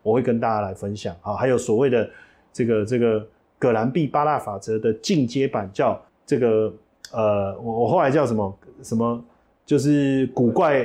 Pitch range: 105-145 Hz